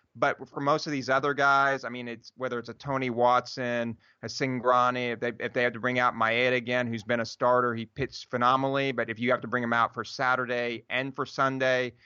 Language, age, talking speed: English, 30-49, 235 wpm